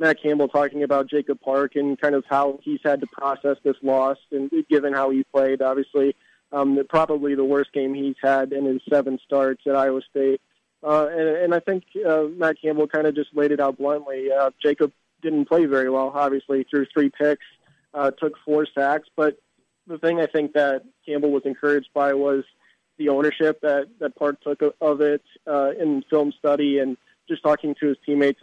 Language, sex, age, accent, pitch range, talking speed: English, male, 20-39, American, 140-150 Hz, 200 wpm